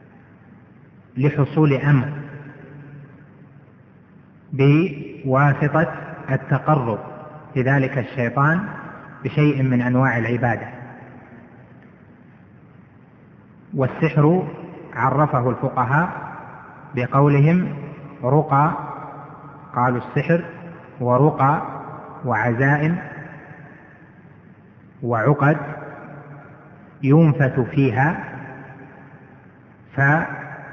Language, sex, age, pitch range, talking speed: Arabic, male, 30-49, 130-155 Hz, 45 wpm